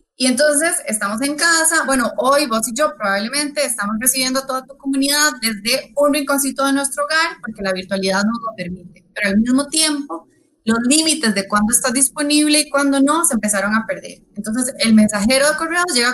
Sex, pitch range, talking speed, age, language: female, 205-290 Hz, 195 wpm, 20-39, Spanish